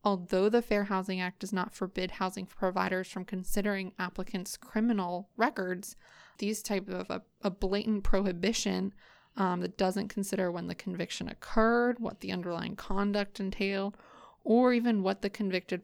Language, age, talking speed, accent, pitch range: English, 20-39, 150 wpm, American, 180-210 Hz